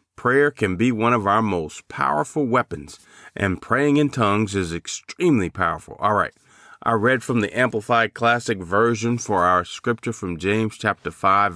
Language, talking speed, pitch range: English, 165 wpm, 100-120 Hz